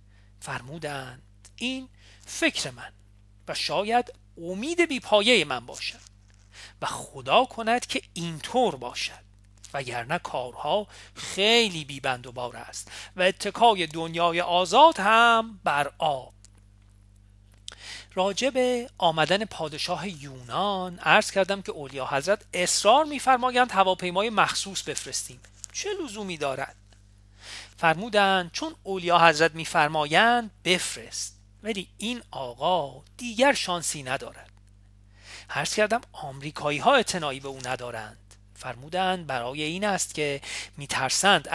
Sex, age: male, 40-59